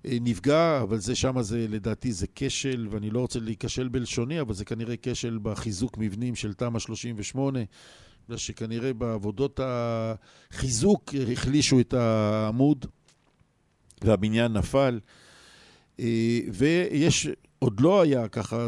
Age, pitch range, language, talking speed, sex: 50-69, 110-135 Hz, Hebrew, 110 wpm, male